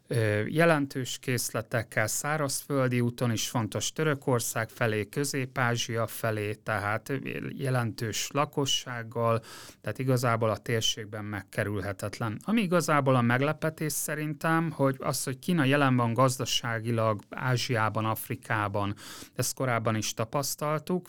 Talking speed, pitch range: 100 wpm, 110-140 Hz